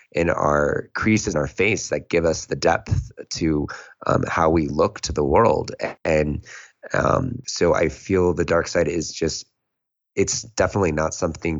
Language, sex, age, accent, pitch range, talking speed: English, male, 20-39, American, 85-95 Hz, 170 wpm